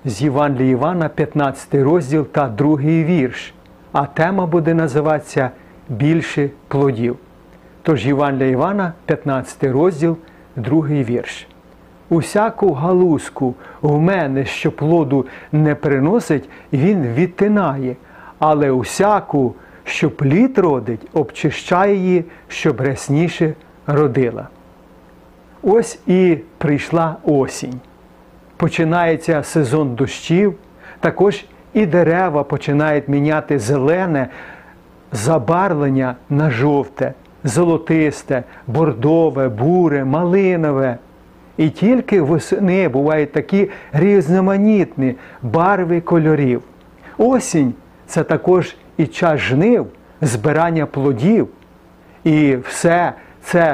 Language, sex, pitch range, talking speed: Ukrainian, male, 135-170 Hz, 90 wpm